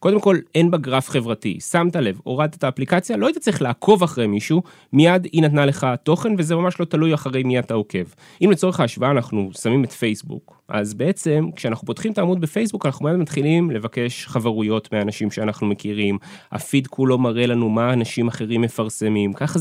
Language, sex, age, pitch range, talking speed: Hebrew, male, 20-39, 120-175 Hz, 185 wpm